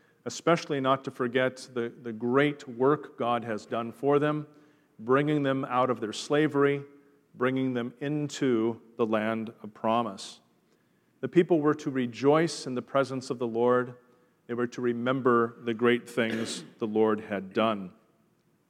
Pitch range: 120-145 Hz